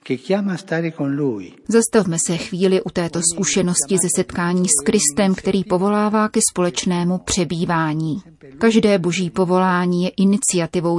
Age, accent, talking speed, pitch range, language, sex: 30-49, native, 110 wpm, 175-200 Hz, Czech, female